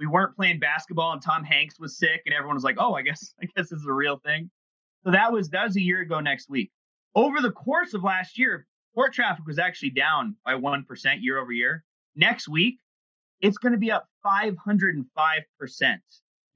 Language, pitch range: English, 150-205 Hz